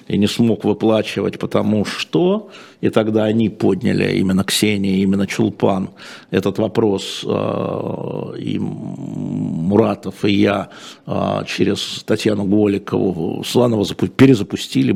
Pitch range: 100-120 Hz